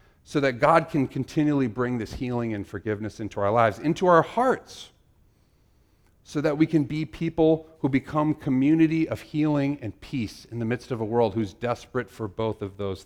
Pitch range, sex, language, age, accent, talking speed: 105-155 Hz, male, English, 40-59, American, 190 wpm